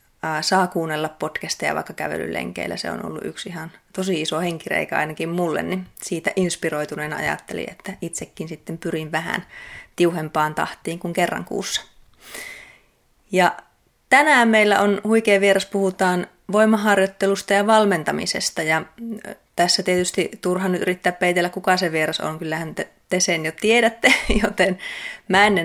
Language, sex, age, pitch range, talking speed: Finnish, female, 30-49, 155-195 Hz, 135 wpm